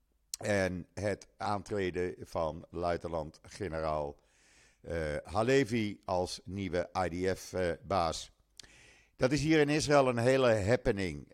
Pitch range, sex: 90-120 Hz, male